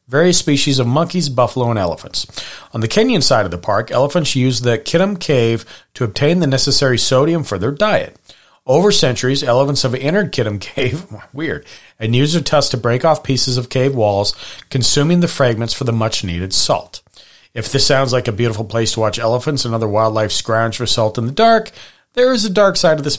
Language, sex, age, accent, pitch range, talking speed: English, male, 40-59, American, 115-145 Hz, 205 wpm